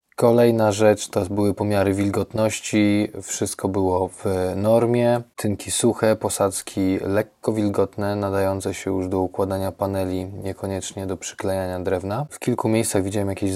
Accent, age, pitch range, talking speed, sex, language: native, 20-39, 95-110 Hz, 135 wpm, male, Polish